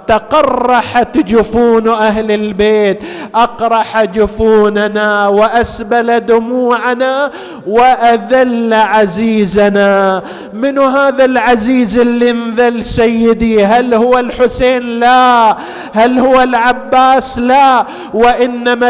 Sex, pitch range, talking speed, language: male, 230-255 Hz, 80 wpm, Arabic